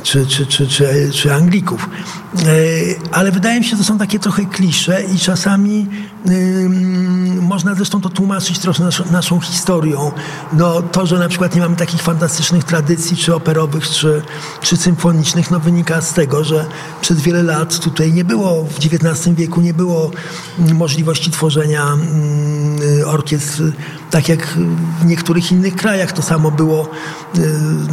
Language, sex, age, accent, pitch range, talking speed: Polish, male, 50-69, native, 155-175 Hz, 155 wpm